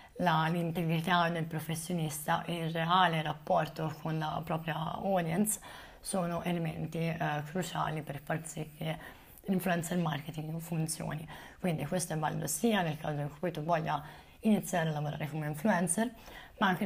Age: 20-39